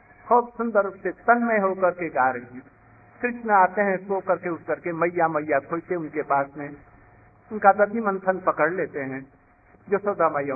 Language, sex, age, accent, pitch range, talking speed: Hindi, male, 60-79, native, 145-220 Hz, 160 wpm